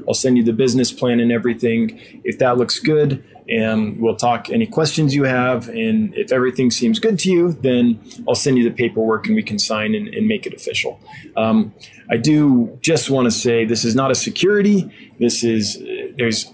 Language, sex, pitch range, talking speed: English, male, 115-165 Hz, 205 wpm